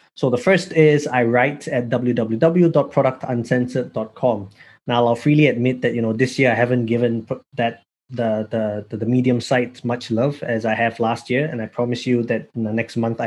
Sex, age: male, 20-39